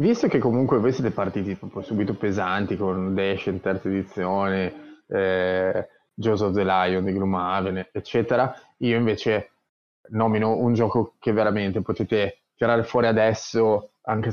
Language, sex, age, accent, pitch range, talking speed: Italian, male, 20-39, native, 100-130 Hz, 140 wpm